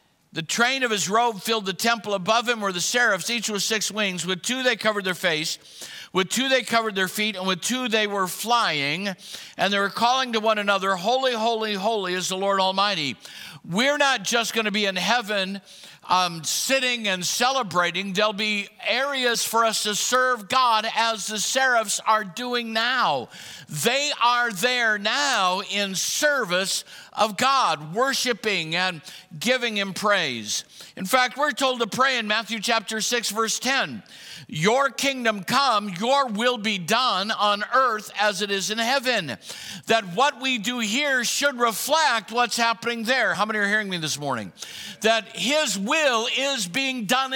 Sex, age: male, 60-79